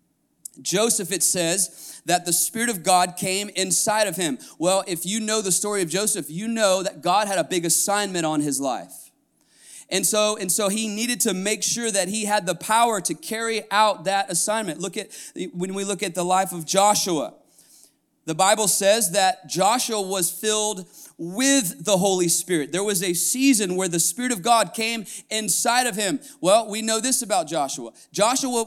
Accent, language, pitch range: American, English, 190-240 Hz